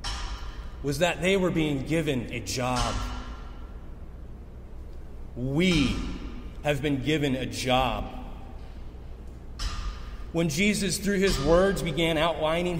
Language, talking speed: English, 100 wpm